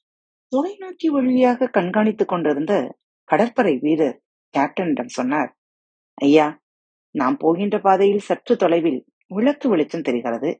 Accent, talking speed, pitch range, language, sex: native, 80 wpm, 150-255 Hz, Tamil, female